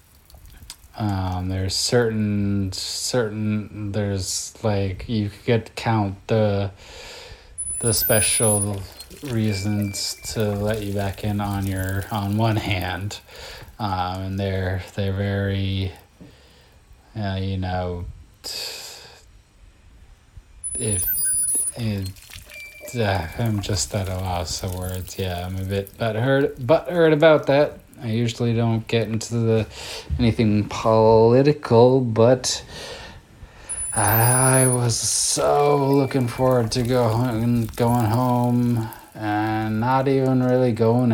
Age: 20-39